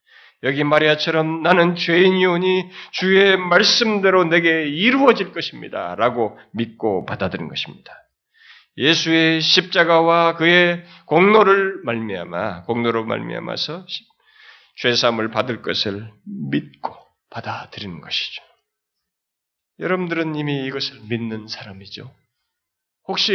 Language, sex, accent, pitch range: Korean, male, native, 120-185 Hz